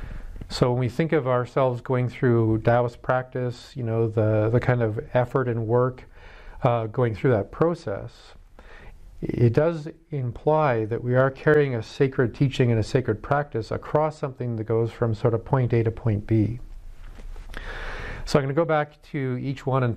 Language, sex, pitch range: English, male, 115-140 Hz